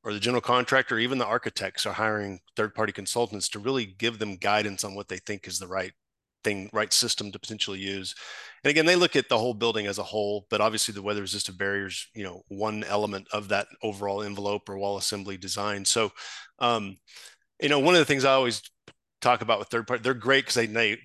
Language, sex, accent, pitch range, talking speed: English, male, American, 100-120 Hz, 215 wpm